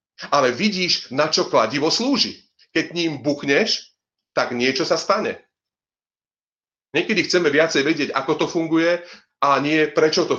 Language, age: Slovak, 40-59